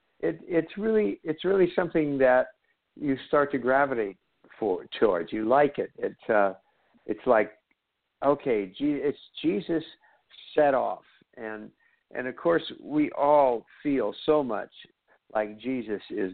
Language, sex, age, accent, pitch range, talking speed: English, male, 60-79, American, 125-170 Hz, 140 wpm